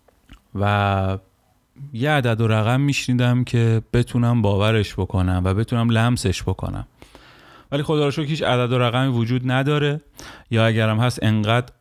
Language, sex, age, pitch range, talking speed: Persian, male, 30-49, 100-125 Hz, 135 wpm